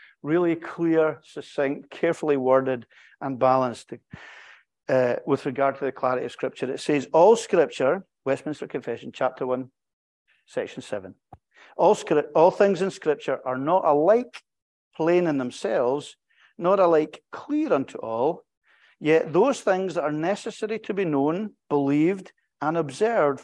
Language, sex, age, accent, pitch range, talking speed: English, male, 50-69, British, 120-165 Hz, 135 wpm